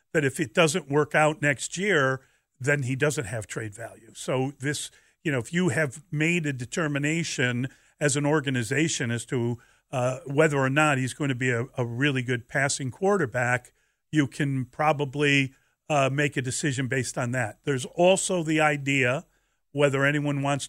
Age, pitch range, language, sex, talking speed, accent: 50-69, 130-160 Hz, English, male, 175 wpm, American